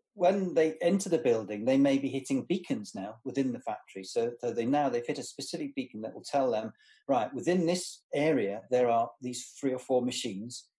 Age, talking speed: 40-59, 210 wpm